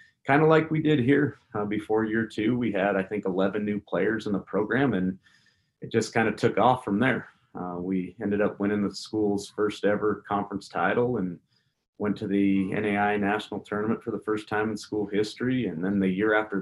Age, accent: 30-49, American